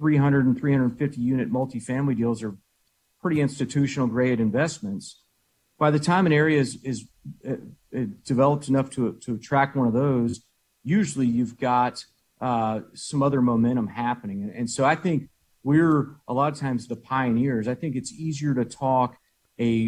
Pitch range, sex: 115-135 Hz, male